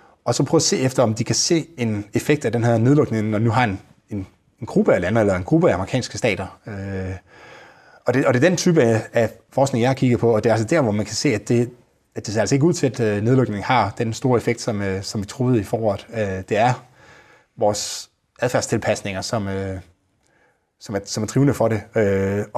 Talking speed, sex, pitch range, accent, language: 240 wpm, male, 105-125 Hz, native, Danish